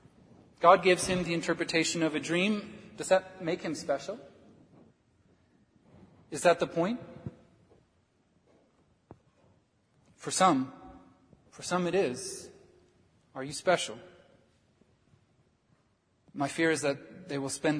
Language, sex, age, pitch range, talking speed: English, male, 30-49, 155-185 Hz, 110 wpm